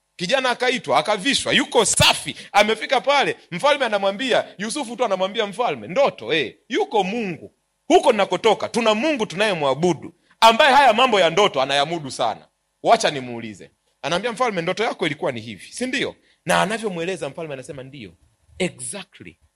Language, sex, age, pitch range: Swahili, male, 40-59, 165-270 Hz